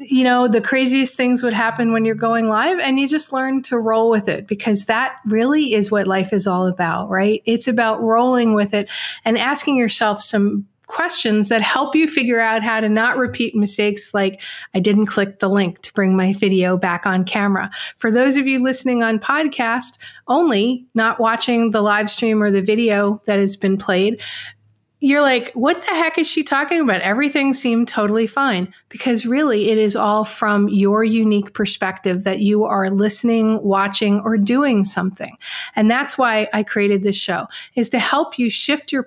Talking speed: 190 wpm